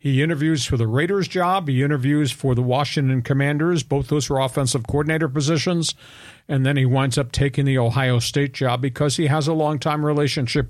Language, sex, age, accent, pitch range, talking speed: English, male, 50-69, American, 130-155 Hz, 190 wpm